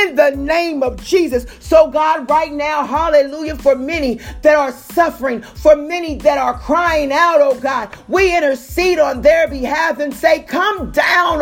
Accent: American